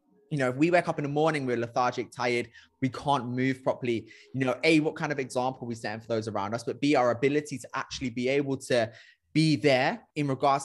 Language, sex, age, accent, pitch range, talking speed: English, male, 20-39, British, 125-155 Hz, 235 wpm